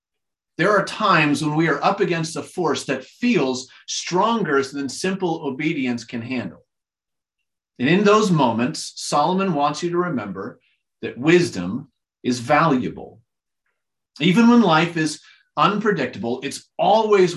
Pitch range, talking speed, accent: 125-170 Hz, 130 wpm, American